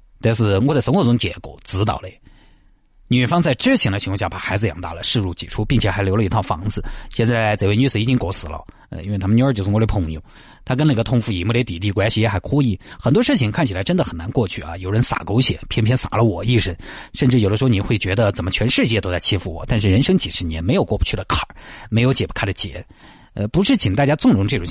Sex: male